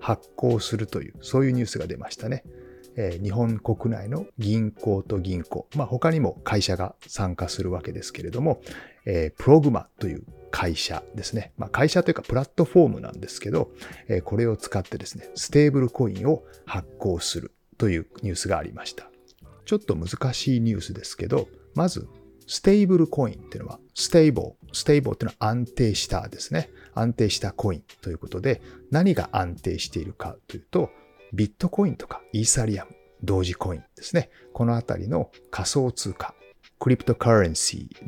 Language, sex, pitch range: Japanese, male, 95-130 Hz